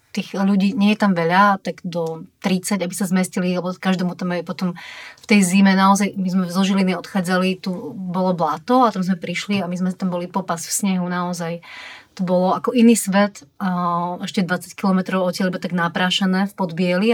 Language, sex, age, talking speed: Slovak, female, 30-49, 200 wpm